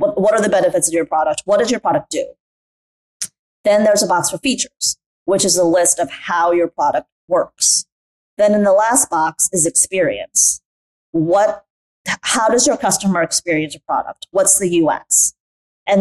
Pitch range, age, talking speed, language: 175-250 Hz, 30-49, 170 wpm, English